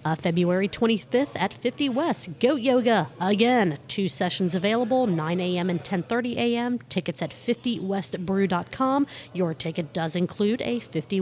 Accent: American